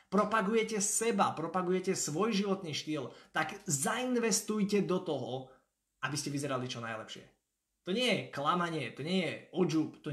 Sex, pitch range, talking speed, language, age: male, 145-190 Hz, 140 wpm, Slovak, 20-39